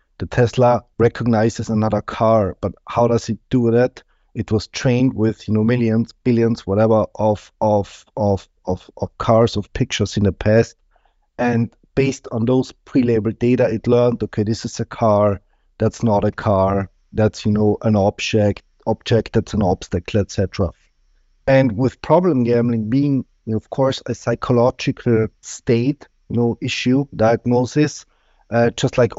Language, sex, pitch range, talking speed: English, male, 105-120 Hz, 160 wpm